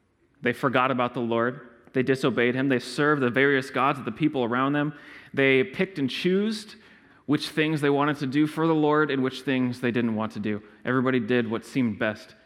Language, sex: English, male